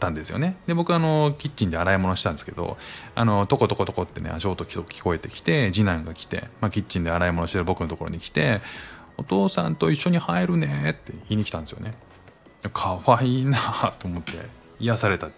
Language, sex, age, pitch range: Japanese, male, 20-39, 85-135 Hz